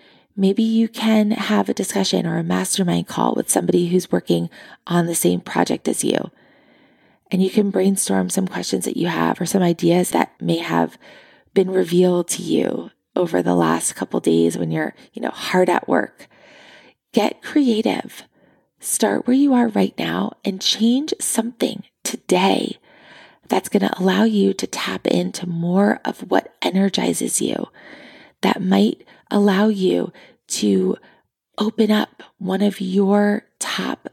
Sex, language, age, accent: female, English, 20-39, American